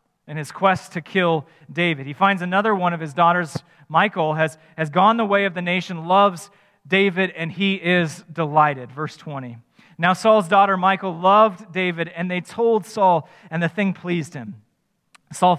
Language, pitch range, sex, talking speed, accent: English, 165-205 Hz, male, 175 wpm, American